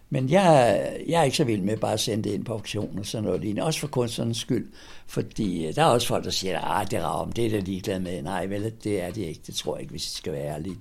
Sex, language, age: male, Danish, 60-79